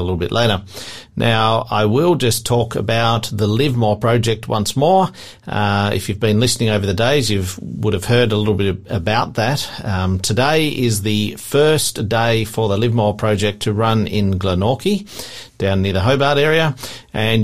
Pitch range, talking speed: 105-130 Hz, 180 wpm